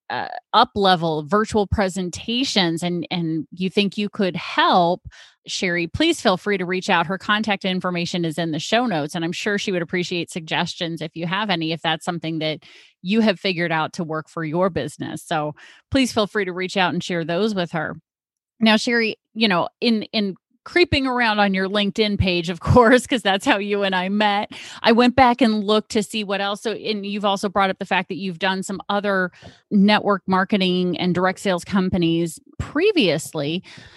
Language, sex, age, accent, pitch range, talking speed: English, female, 30-49, American, 175-215 Hz, 200 wpm